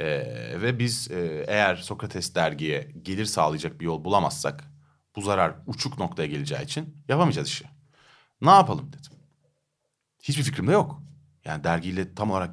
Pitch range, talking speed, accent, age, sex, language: 85-145 Hz, 145 wpm, native, 40-59, male, Turkish